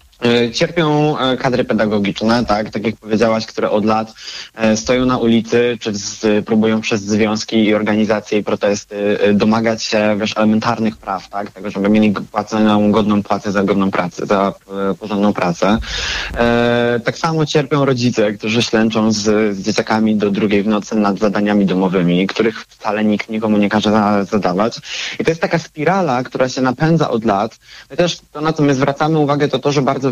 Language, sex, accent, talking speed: Polish, male, native, 175 wpm